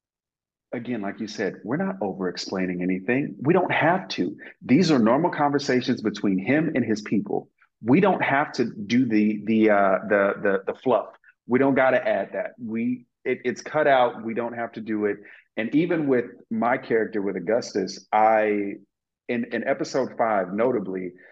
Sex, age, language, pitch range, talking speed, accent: male, 40-59, English, 100-130 Hz, 175 wpm, American